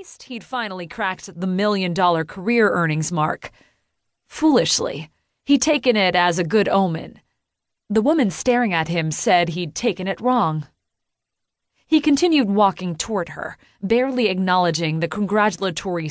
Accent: American